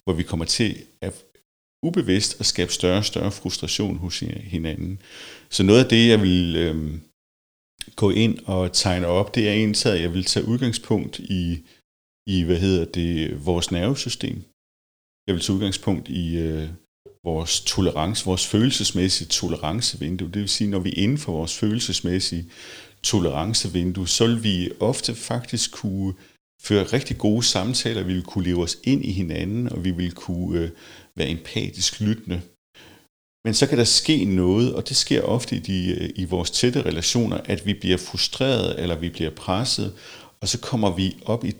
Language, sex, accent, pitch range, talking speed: Danish, male, native, 85-110 Hz, 170 wpm